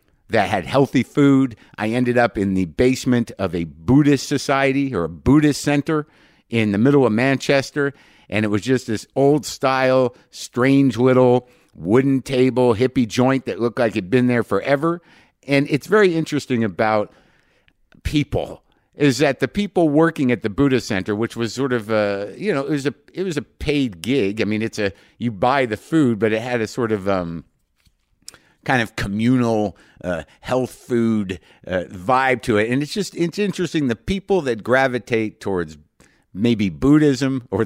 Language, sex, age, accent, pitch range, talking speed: English, male, 50-69, American, 115-145 Hz, 175 wpm